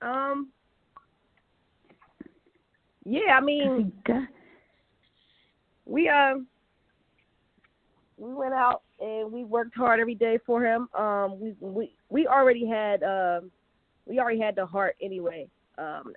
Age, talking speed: 20-39, 115 wpm